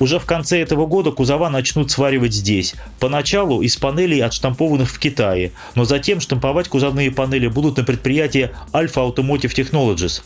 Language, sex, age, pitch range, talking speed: Russian, male, 30-49, 120-145 Hz, 150 wpm